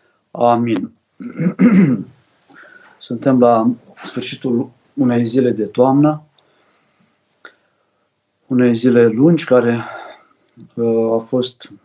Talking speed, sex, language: 70 wpm, male, Romanian